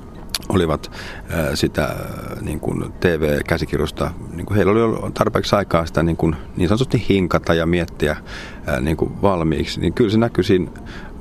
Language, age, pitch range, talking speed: Finnish, 40-59, 75-90 Hz, 150 wpm